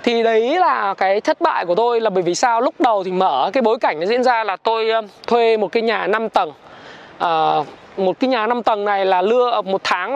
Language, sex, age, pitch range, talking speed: Vietnamese, male, 20-39, 200-255 Hz, 240 wpm